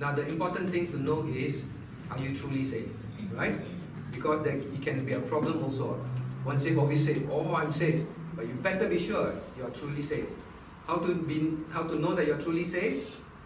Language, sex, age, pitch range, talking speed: English, male, 40-59, 145-175 Hz, 200 wpm